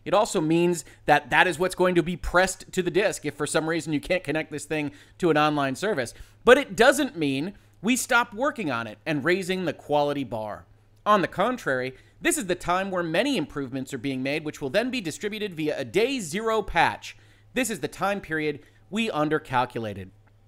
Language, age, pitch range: English, 30-49, 145-205 Hz